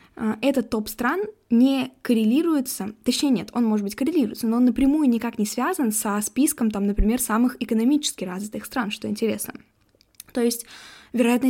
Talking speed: 150 wpm